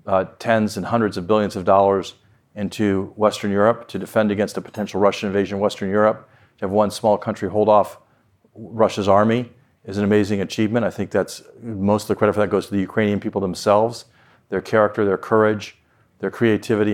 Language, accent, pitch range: English, American, 100-110 Hz